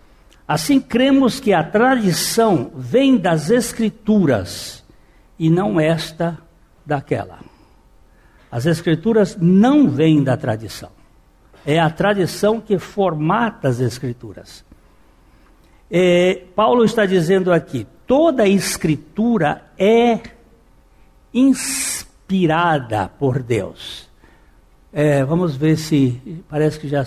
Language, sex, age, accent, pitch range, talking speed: Portuguese, male, 60-79, Brazilian, 145-210 Hz, 90 wpm